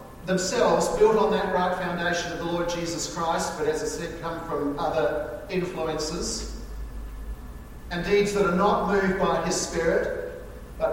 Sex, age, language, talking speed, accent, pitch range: male, 40-59, English, 160 wpm, Australian, 160-195 Hz